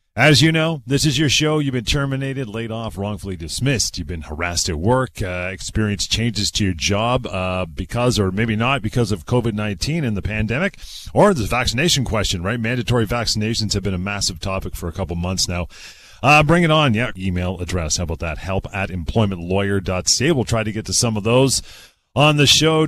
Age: 40-59